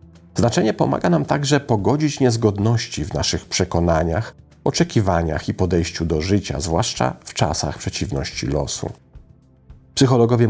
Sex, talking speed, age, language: male, 115 wpm, 40-59, Polish